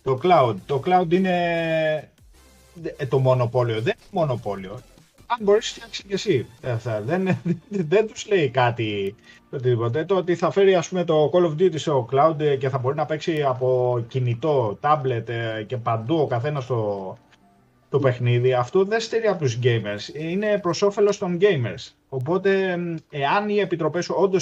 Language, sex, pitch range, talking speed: Greek, male, 120-175 Hz, 165 wpm